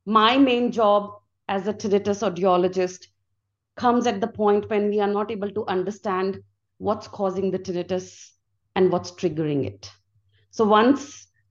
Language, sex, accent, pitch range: English, female, Indian, 175-205 Hz